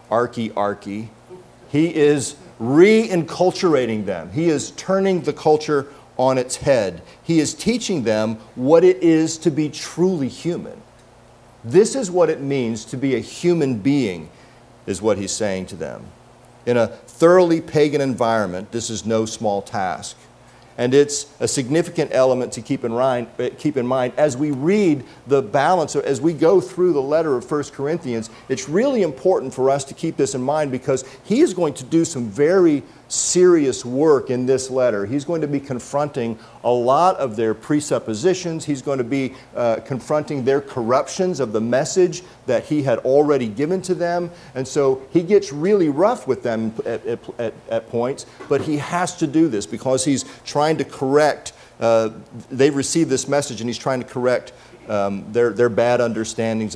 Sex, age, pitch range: male, 50-69, 120-160 Hz